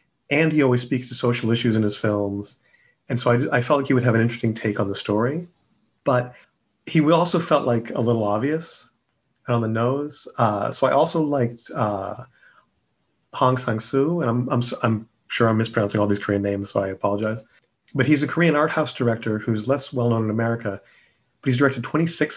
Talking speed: 200 wpm